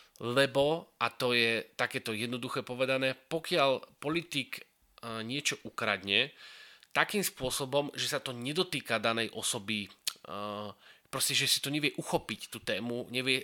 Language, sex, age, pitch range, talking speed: Slovak, male, 30-49, 125-160 Hz, 125 wpm